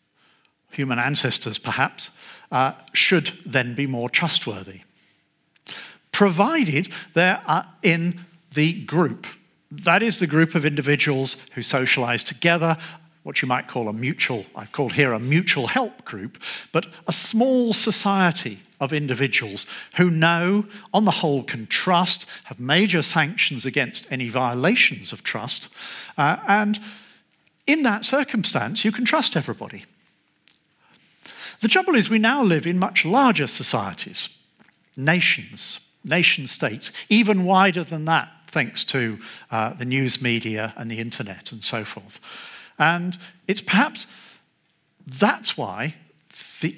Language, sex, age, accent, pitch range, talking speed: English, male, 50-69, British, 130-195 Hz, 130 wpm